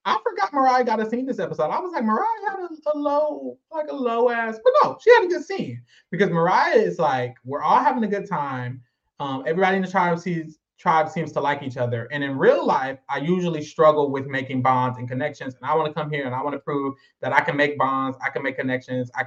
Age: 20-39